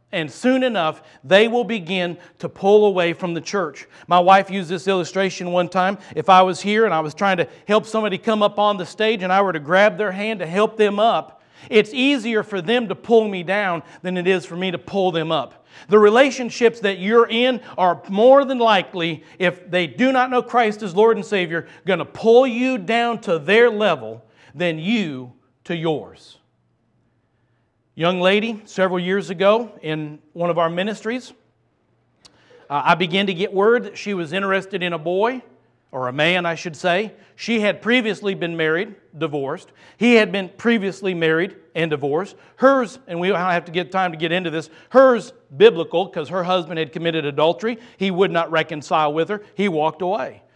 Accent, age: American, 40-59